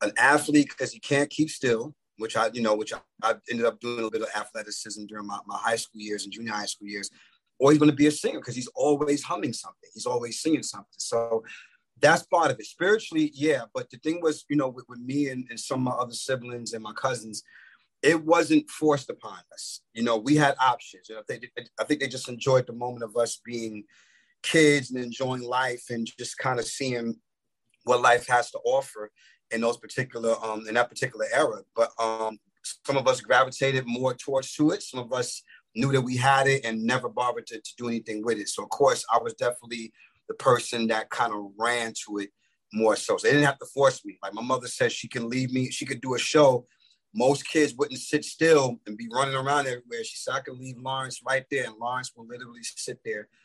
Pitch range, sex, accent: 115-145 Hz, male, American